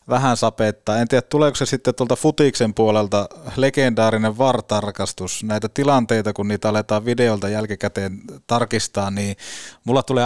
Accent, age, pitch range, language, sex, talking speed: native, 20-39, 105-125 Hz, Finnish, male, 135 wpm